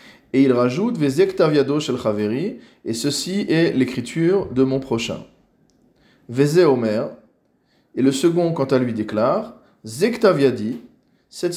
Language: French